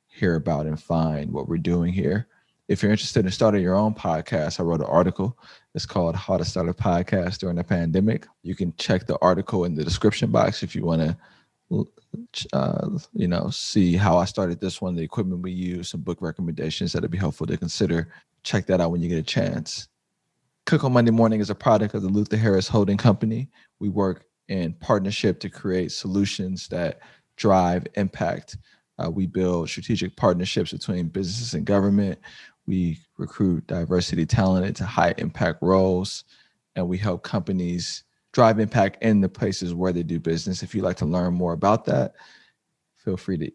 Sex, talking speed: male, 185 wpm